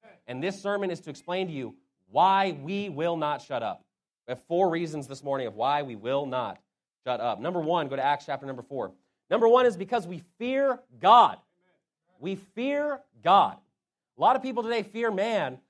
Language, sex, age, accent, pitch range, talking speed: English, male, 30-49, American, 150-205 Hz, 200 wpm